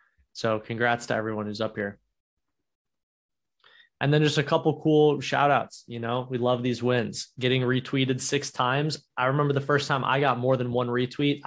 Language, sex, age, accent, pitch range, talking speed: English, male, 20-39, American, 115-140 Hz, 190 wpm